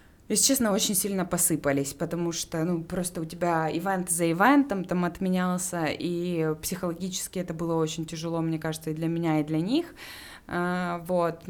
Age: 20-39